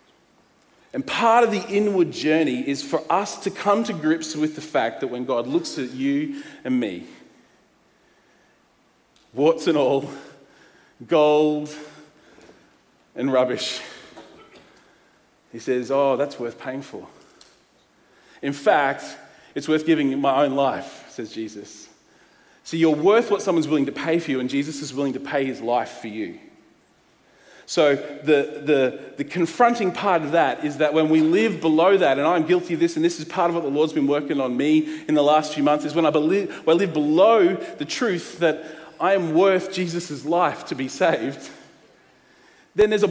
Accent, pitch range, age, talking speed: Australian, 150-200 Hz, 40-59, 175 wpm